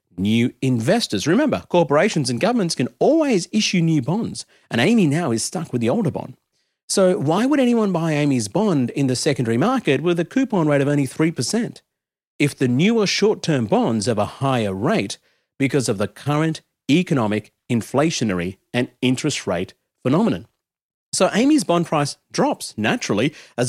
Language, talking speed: English, 160 wpm